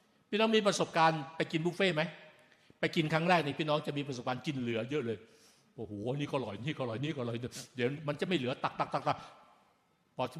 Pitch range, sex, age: 145-210 Hz, male, 60-79